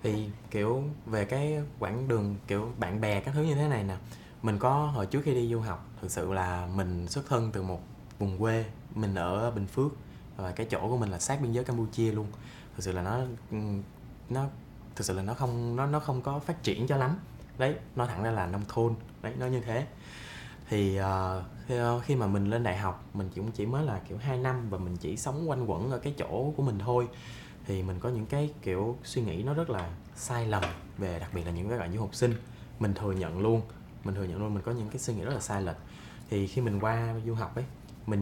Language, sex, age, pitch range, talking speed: Vietnamese, male, 20-39, 100-130 Hz, 245 wpm